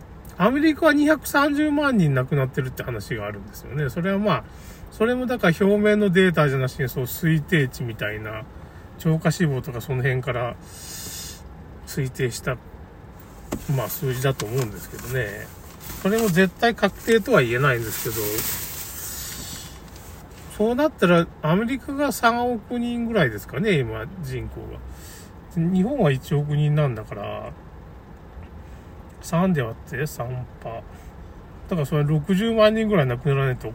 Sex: male